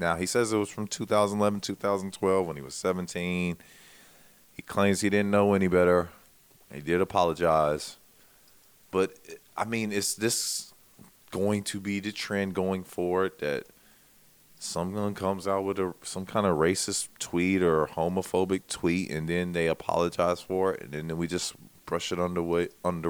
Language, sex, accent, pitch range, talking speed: English, male, American, 90-110 Hz, 155 wpm